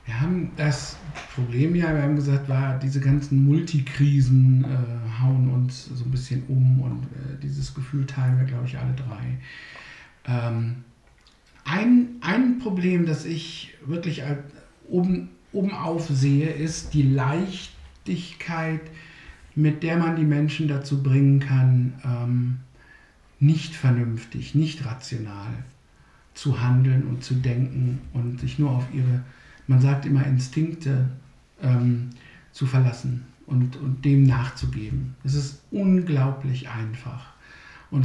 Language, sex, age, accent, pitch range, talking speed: German, male, 60-79, German, 130-155 Hz, 130 wpm